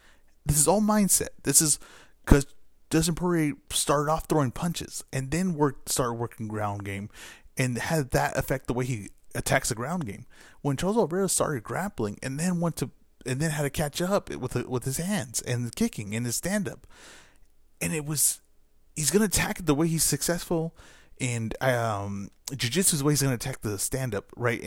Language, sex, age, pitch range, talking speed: English, male, 30-49, 110-150 Hz, 190 wpm